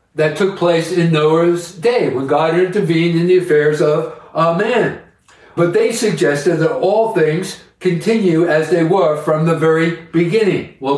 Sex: male